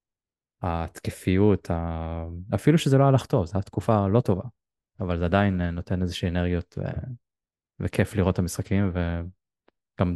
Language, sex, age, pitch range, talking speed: Hebrew, male, 20-39, 90-100 Hz, 135 wpm